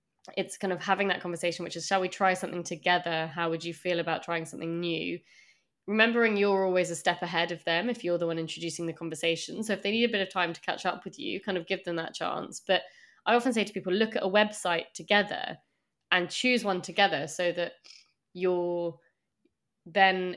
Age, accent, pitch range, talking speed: 20-39, British, 170-205 Hz, 220 wpm